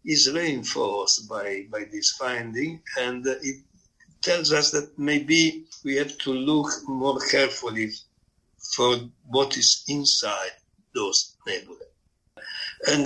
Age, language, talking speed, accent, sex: 60-79, English, 120 wpm, Italian, male